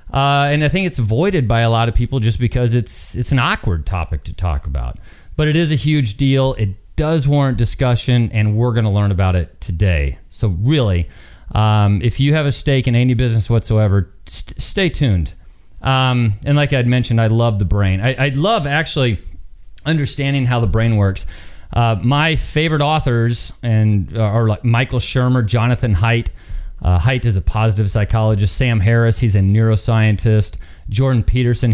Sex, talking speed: male, 180 wpm